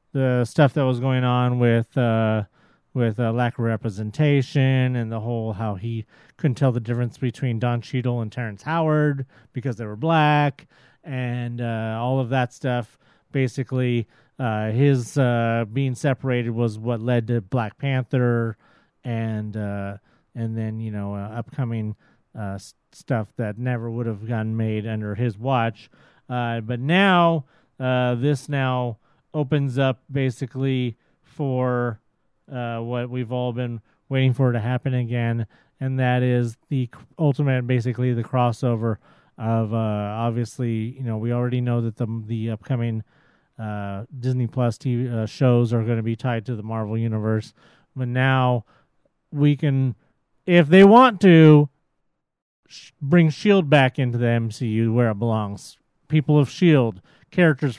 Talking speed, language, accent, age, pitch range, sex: 155 wpm, English, American, 40-59, 115-135 Hz, male